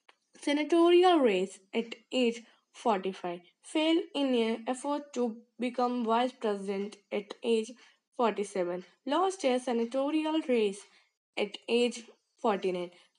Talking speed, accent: 105 wpm, native